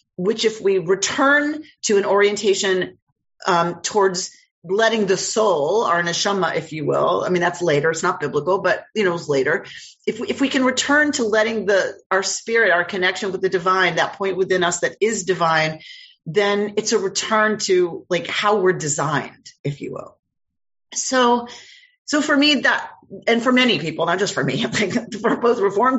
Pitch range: 170-230 Hz